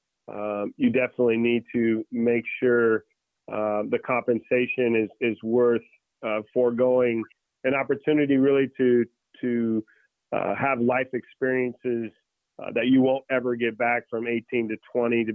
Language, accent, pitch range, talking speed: English, American, 110-125 Hz, 140 wpm